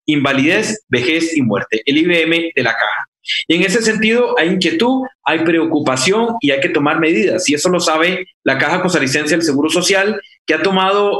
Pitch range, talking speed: 140-190 Hz, 195 wpm